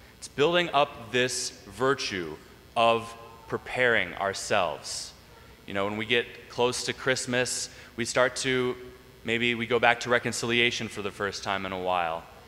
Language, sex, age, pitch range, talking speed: English, male, 20-39, 110-130 Hz, 155 wpm